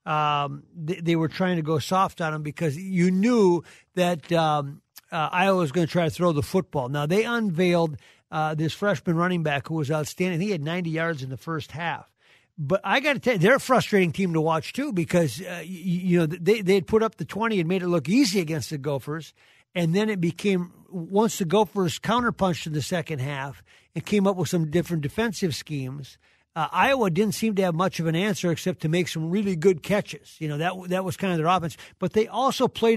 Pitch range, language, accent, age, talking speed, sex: 155-200 Hz, English, American, 50-69, 230 wpm, male